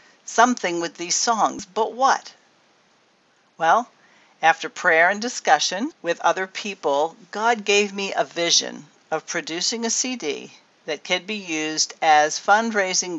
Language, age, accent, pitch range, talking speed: English, 50-69, American, 155-210 Hz, 130 wpm